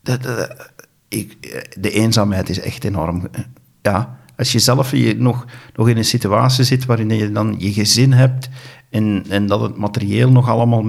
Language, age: Dutch, 50-69